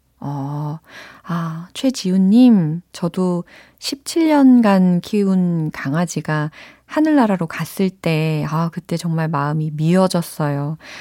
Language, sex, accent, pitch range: Korean, female, native, 155-195 Hz